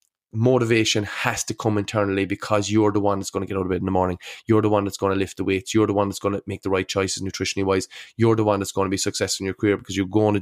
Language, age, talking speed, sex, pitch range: English, 20-39, 290 wpm, male, 95-110 Hz